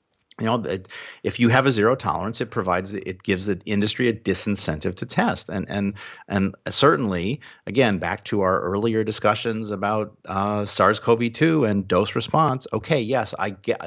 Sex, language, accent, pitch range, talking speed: male, English, American, 95-110 Hz, 165 wpm